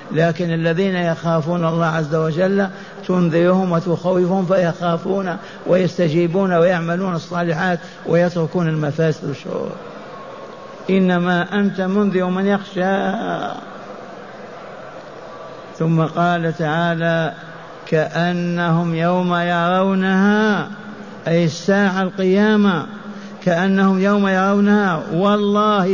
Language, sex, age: Arabic, male, 60-79